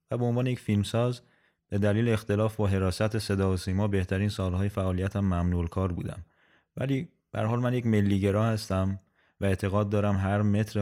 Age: 30-49